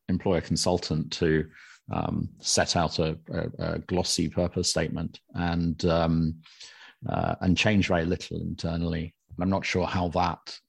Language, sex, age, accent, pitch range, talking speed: English, male, 30-49, British, 85-100 Hz, 140 wpm